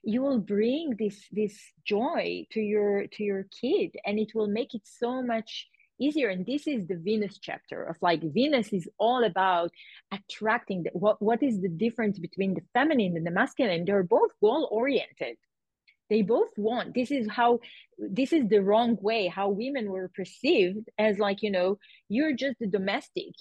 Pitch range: 200-265 Hz